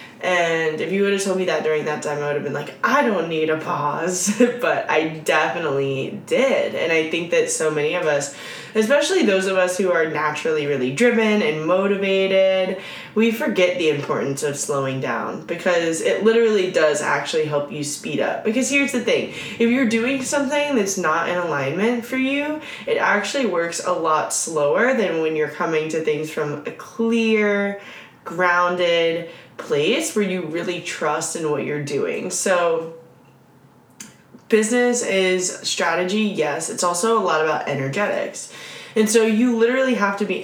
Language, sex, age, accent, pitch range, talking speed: English, female, 10-29, American, 155-220 Hz, 175 wpm